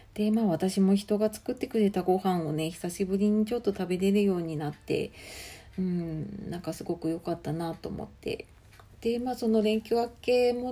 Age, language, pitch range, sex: 40-59, Japanese, 145-205 Hz, female